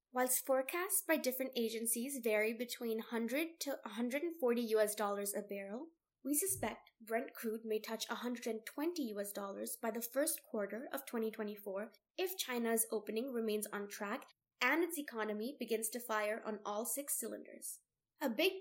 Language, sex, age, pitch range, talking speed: English, female, 10-29, 220-280 Hz, 150 wpm